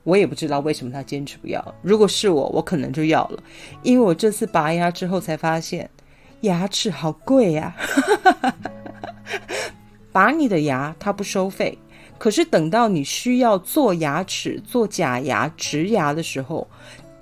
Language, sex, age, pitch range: Chinese, female, 30-49, 185-255 Hz